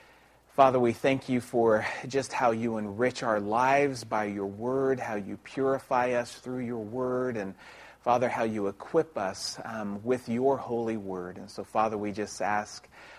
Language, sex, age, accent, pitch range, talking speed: French, male, 40-59, American, 100-130 Hz, 175 wpm